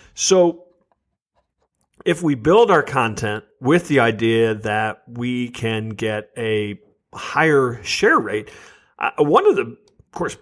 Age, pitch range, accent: 50-69, 120-165 Hz, American